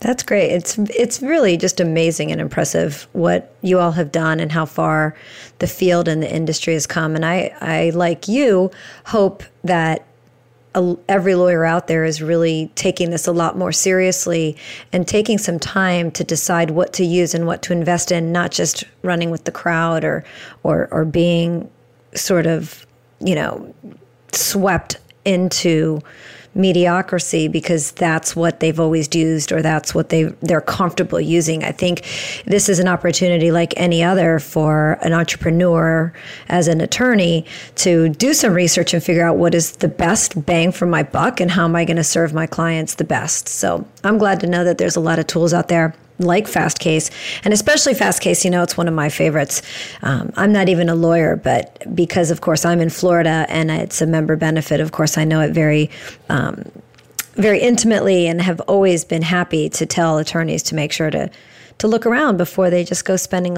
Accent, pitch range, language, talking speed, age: American, 160-180 Hz, English, 190 wpm, 40-59